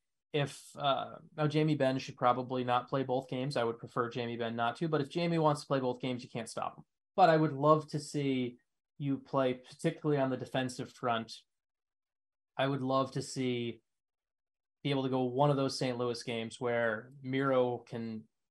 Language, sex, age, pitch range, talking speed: English, male, 20-39, 125-150 Hz, 200 wpm